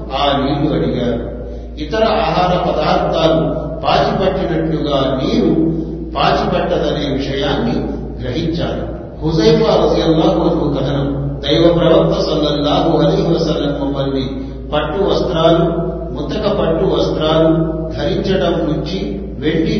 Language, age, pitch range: Telugu, 40-59, 135-175 Hz